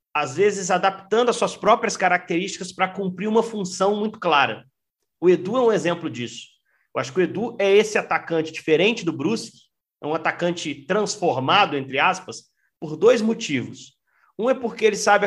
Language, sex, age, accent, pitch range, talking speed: Portuguese, male, 40-59, Brazilian, 150-205 Hz, 175 wpm